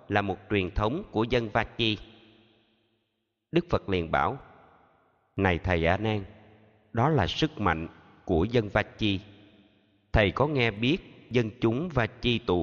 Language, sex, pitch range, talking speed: Vietnamese, male, 90-120 Hz, 145 wpm